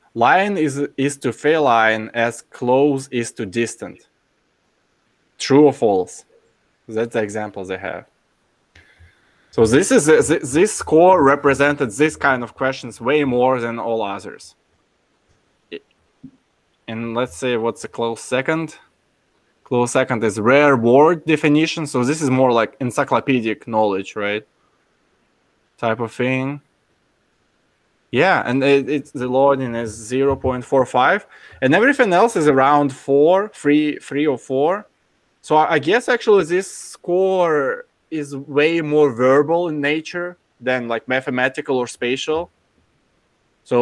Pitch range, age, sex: 115-150 Hz, 20-39, male